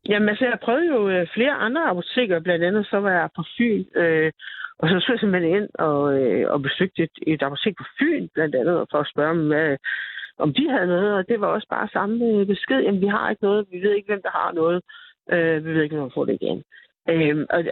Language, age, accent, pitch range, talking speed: Danish, 60-79, native, 165-225 Hz, 240 wpm